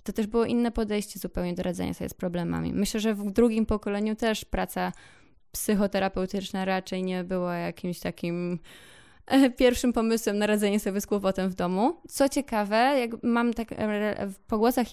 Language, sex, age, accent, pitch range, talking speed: Polish, female, 20-39, native, 185-220 Hz, 160 wpm